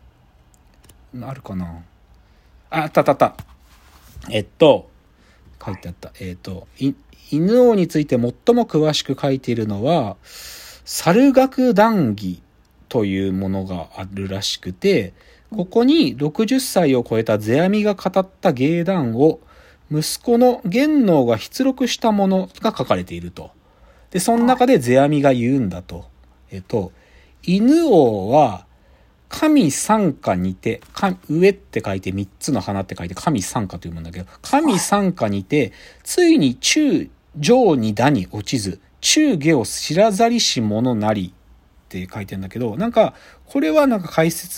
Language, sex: Japanese, male